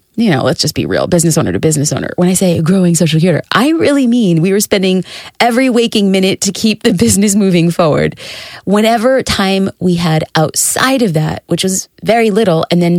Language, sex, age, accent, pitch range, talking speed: English, female, 20-39, American, 160-195 Hz, 215 wpm